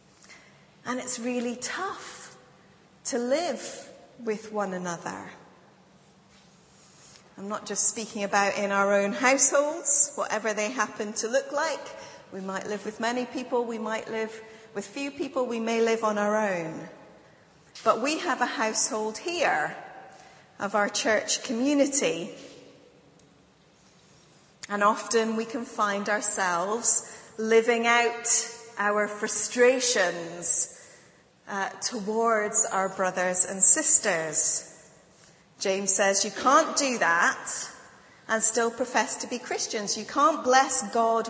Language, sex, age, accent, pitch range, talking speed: English, female, 30-49, British, 200-250 Hz, 120 wpm